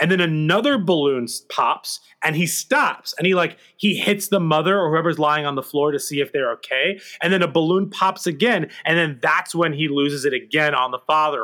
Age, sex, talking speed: 30-49, male, 225 wpm